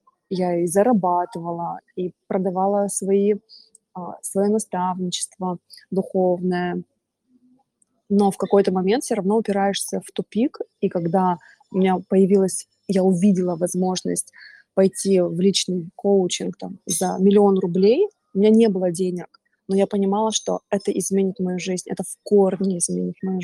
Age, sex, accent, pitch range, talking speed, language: 20-39, female, native, 185-215 Hz, 135 wpm, Russian